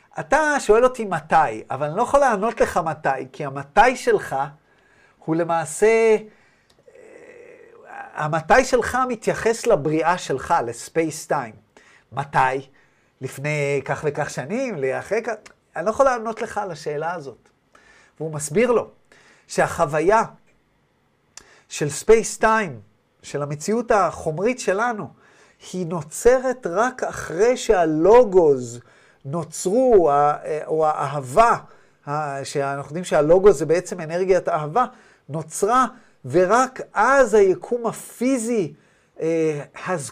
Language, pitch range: Hebrew, 145-230 Hz